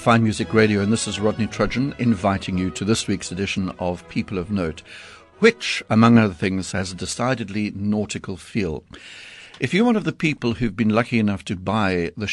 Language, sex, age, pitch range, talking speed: English, male, 60-79, 95-120 Hz, 195 wpm